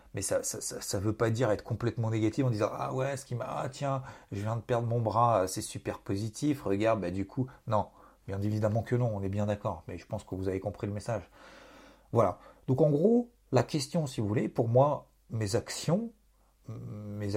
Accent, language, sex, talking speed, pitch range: French, French, male, 230 wpm, 105-130 Hz